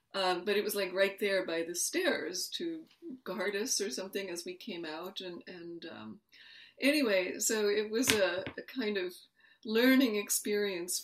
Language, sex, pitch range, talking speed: Turkish, female, 175-265 Hz, 175 wpm